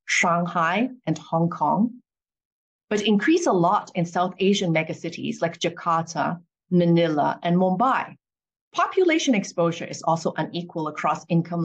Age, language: 30-49, English